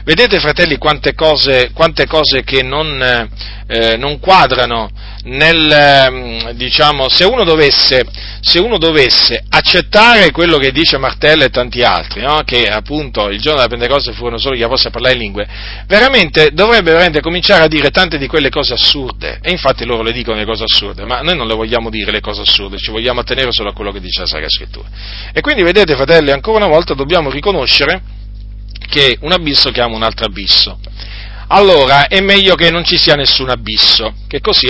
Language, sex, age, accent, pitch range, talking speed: Italian, male, 40-59, native, 105-150 Hz, 190 wpm